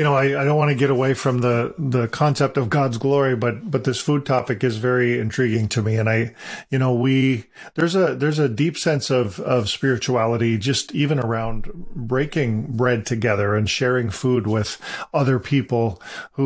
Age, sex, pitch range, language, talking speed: 40-59, male, 115-140 Hz, English, 195 wpm